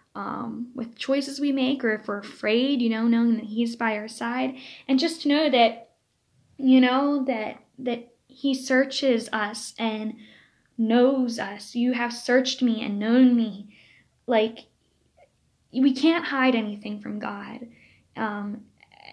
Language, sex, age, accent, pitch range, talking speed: English, female, 10-29, American, 215-255 Hz, 145 wpm